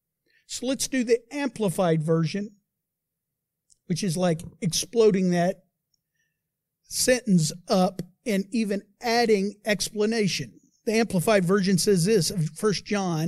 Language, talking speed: English, 110 wpm